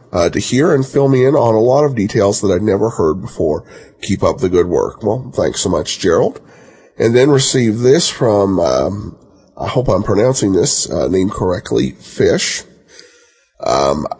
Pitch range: 110-140 Hz